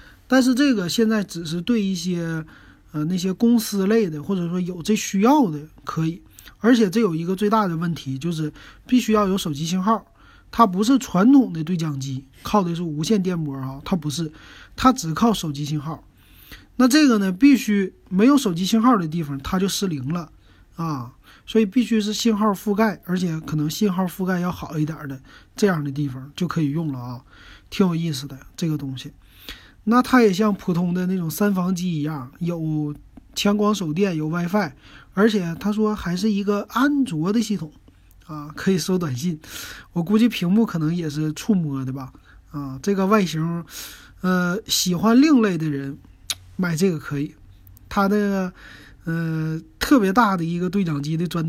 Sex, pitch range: male, 155-210 Hz